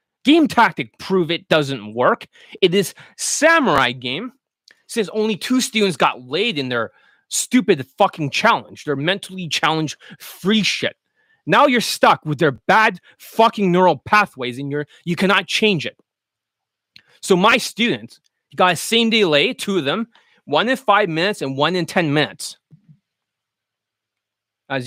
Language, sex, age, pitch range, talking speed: English, male, 30-49, 130-200 Hz, 150 wpm